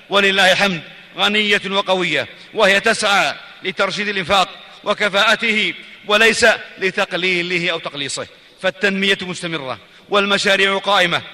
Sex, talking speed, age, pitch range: male, 90 wpm, 40-59, 160-195 Hz